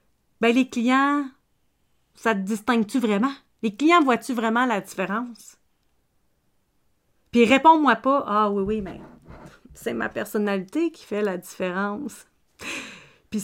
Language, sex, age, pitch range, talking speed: French, female, 40-59, 200-255 Hz, 125 wpm